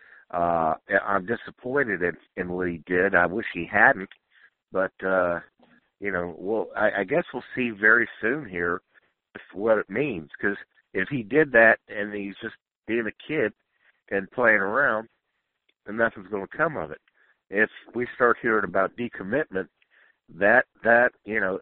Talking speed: 165 wpm